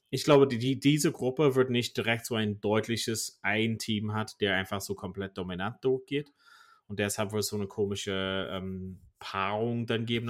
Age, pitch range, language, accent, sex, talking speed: 30-49, 100-125 Hz, German, German, male, 180 wpm